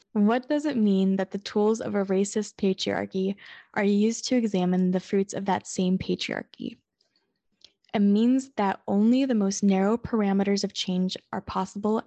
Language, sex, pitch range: English, female, 195-230 Hz